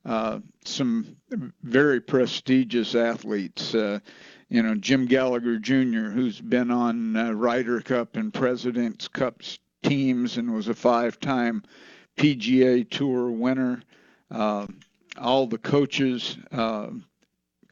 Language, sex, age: English, male, 60-79